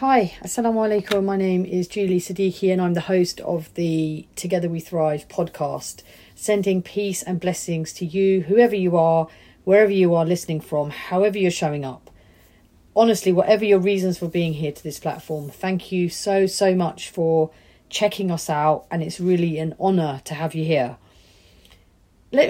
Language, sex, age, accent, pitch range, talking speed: English, female, 40-59, British, 160-205 Hz, 170 wpm